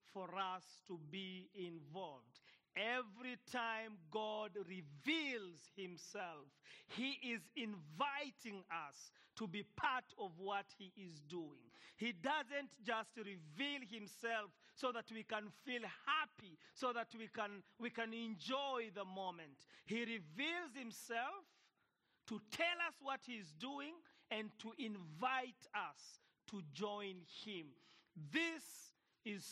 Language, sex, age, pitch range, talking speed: English, male, 40-59, 190-245 Hz, 125 wpm